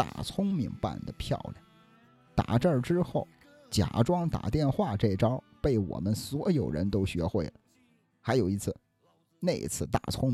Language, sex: Chinese, male